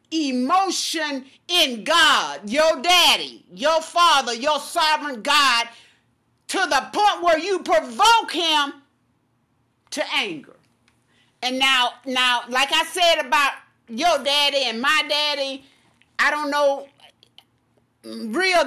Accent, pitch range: American, 230-340 Hz